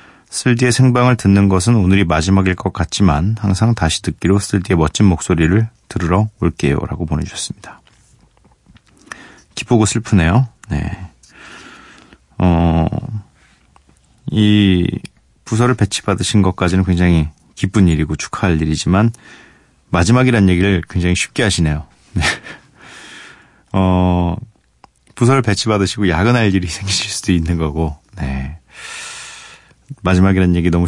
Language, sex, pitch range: Korean, male, 85-110 Hz